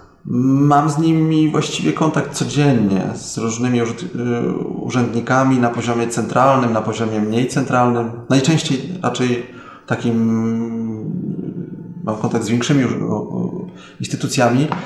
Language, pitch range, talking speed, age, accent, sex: Polish, 115-150 Hz, 95 wpm, 30-49, native, male